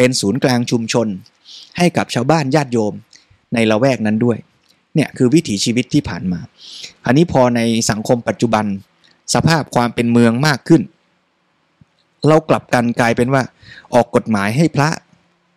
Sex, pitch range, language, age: male, 115-155 Hz, Thai, 20-39